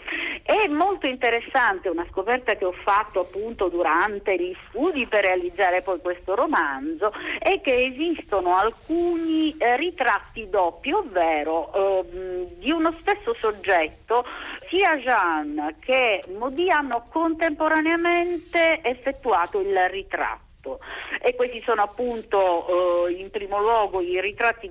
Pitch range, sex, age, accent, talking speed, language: 185-305 Hz, female, 50-69, native, 115 wpm, Italian